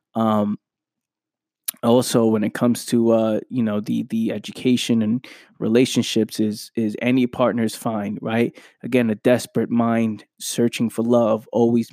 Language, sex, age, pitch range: English, male, 20-39, 115-125 Hz